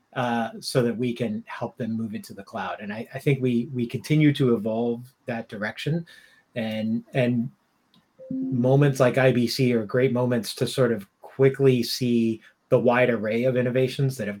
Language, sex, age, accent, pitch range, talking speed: English, male, 30-49, American, 115-135 Hz, 175 wpm